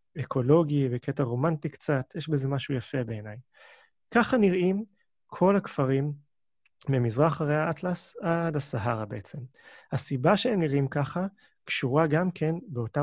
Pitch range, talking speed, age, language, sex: 130-180 Hz, 125 wpm, 30-49, Hebrew, male